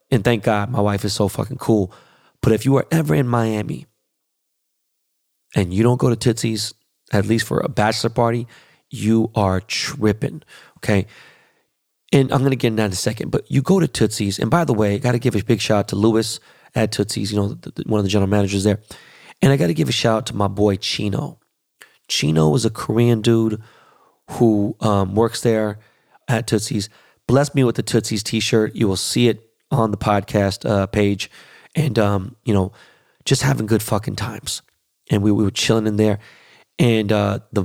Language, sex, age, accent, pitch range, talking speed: English, male, 30-49, American, 105-120 Hz, 205 wpm